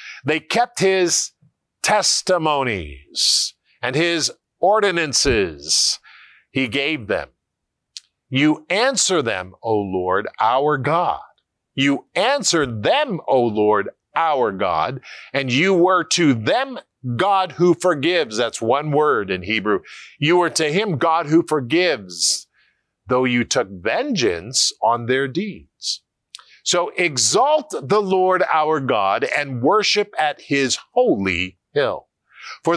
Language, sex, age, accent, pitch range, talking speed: English, male, 50-69, American, 125-185 Hz, 115 wpm